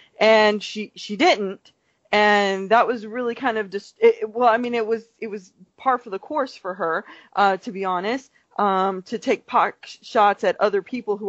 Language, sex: English, female